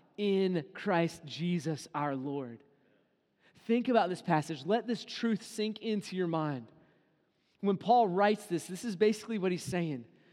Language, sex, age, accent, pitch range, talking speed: English, male, 30-49, American, 170-225 Hz, 150 wpm